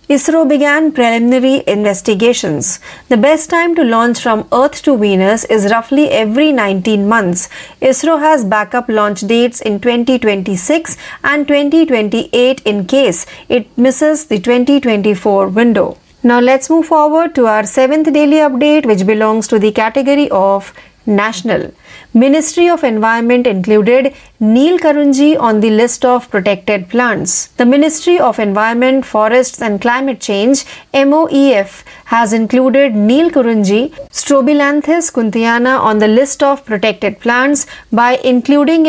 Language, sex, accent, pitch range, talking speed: Marathi, female, native, 215-285 Hz, 130 wpm